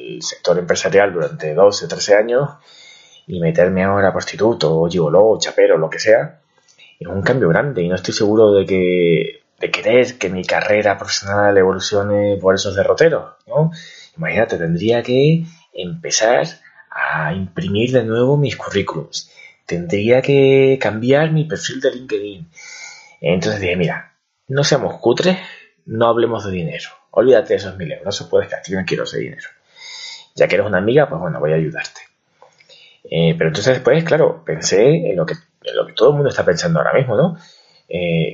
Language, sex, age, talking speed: Spanish, male, 20-39, 175 wpm